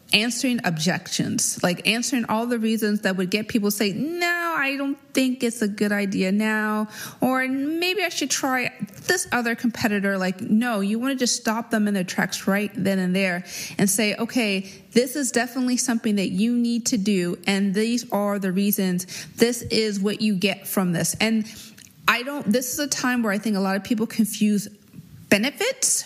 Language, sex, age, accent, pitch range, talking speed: English, female, 30-49, American, 190-235 Hz, 195 wpm